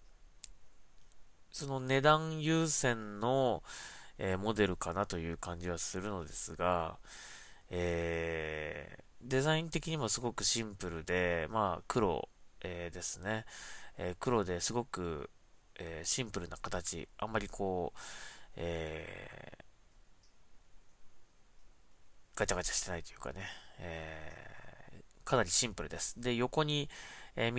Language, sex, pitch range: Japanese, male, 90-125 Hz